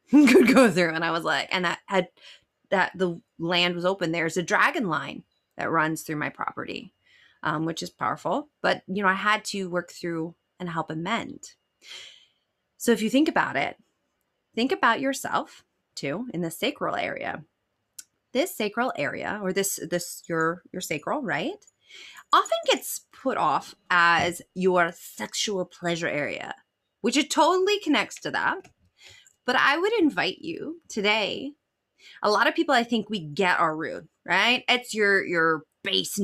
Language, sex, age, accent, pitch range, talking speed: English, female, 30-49, American, 180-275 Hz, 165 wpm